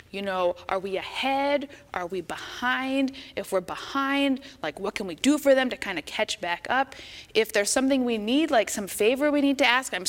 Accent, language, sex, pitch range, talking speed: American, English, female, 200-270 Hz, 220 wpm